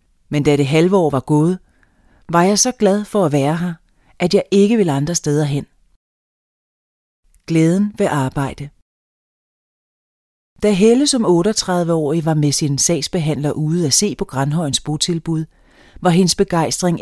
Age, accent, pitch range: 30-49, native, 145-180 Hz